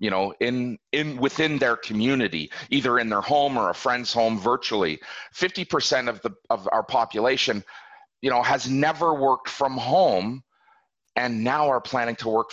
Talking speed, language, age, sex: 170 wpm, English, 40-59, male